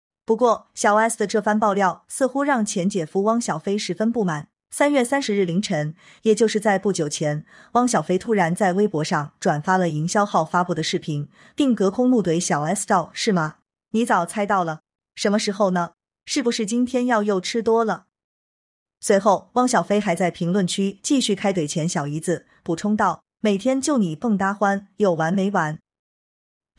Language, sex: Chinese, female